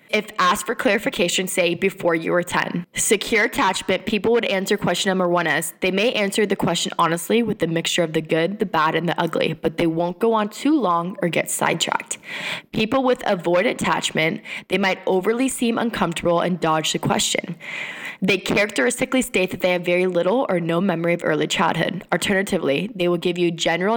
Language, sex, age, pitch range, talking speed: English, female, 10-29, 170-220 Hz, 200 wpm